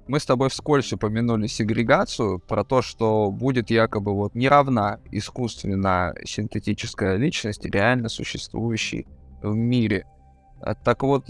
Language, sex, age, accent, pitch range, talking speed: Russian, male, 20-39, native, 105-140 Hz, 115 wpm